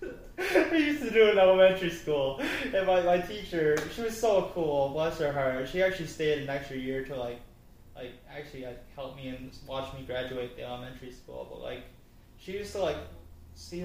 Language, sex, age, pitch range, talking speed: English, male, 20-39, 135-170 Hz, 195 wpm